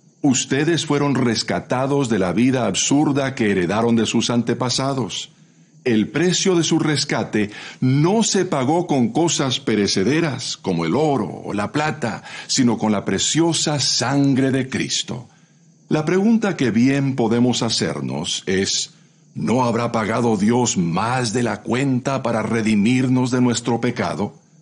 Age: 50-69